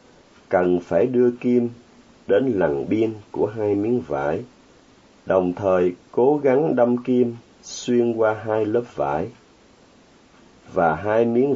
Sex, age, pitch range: male, 30-49, 90-120 Hz